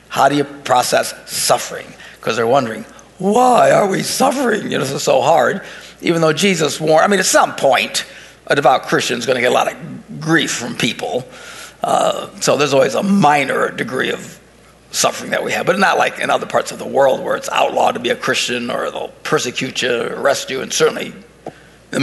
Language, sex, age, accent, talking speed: English, male, 60-79, American, 210 wpm